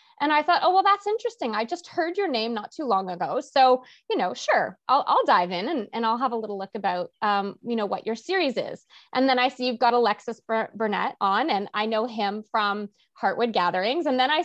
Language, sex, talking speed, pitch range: English, female, 240 wpm, 210-285 Hz